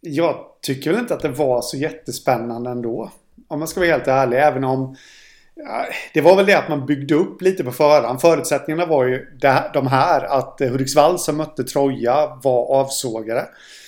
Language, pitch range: Swedish, 125-150 Hz